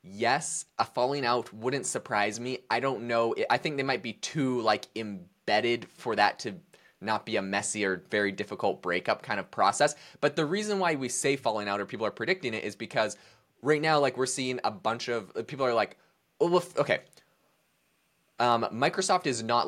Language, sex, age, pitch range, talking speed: English, male, 20-39, 105-140 Hz, 190 wpm